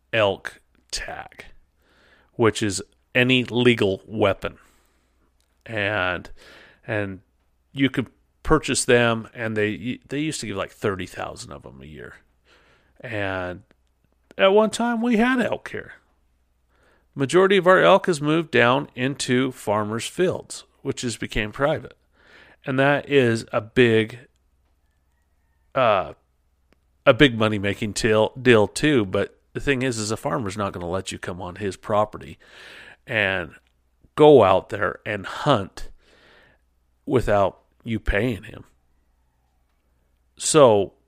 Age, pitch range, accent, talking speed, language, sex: 40-59, 80-125 Hz, American, 125 wpm, English, male